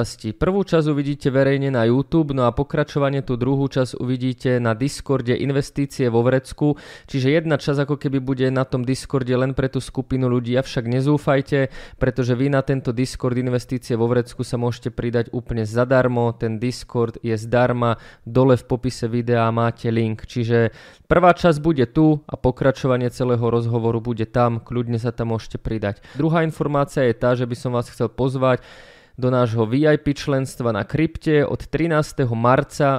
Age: 20-39